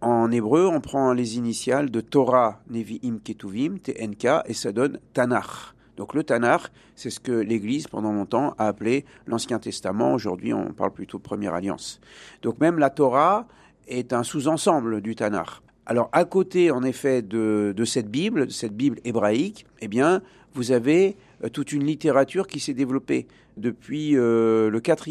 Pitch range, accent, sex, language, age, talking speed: 115-145 Hz, French, male, French, 50-69, 165 wpm